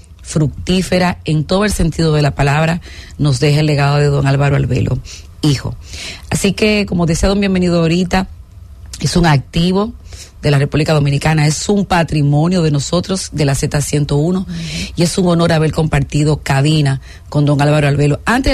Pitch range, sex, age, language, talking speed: 135-175 Hz, female, 40-59, English, 165 wpm